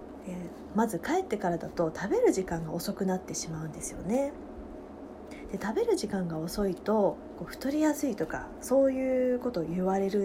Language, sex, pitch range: Japanese, female, 185-285 Hz